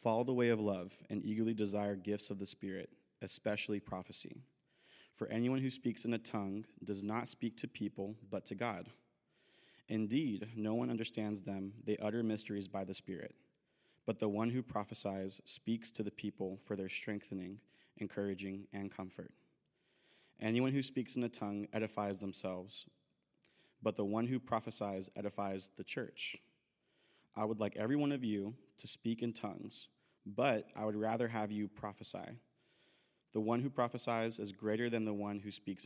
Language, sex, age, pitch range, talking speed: English, male, 30-49, 100-115 Hz, 165 wpm